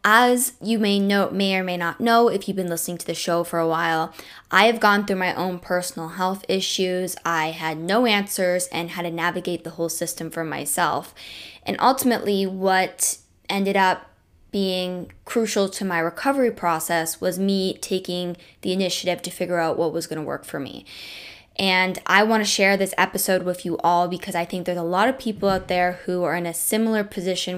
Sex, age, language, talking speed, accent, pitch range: female, 10-29, English, 200 wpm, American, 175-205 Hz